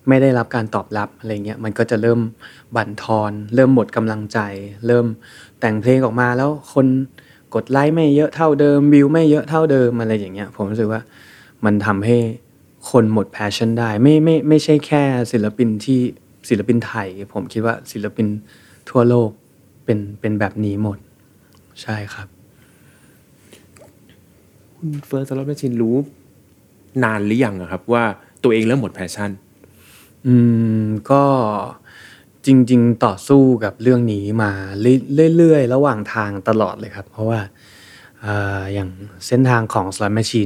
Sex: male